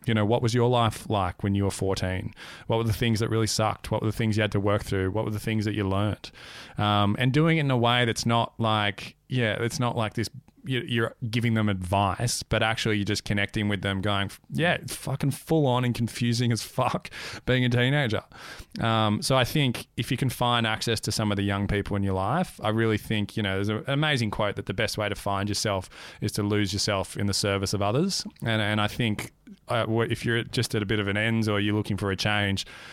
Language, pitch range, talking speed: English, 105-120 Hz, 245 wpm